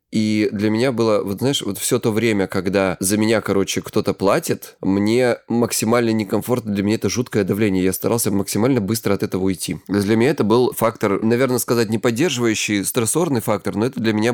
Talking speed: 195 wpm